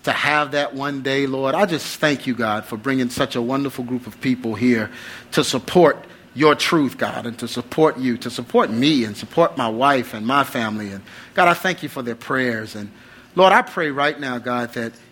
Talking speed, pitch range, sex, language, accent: 220 wpm, 125-155 Hz, male, English, American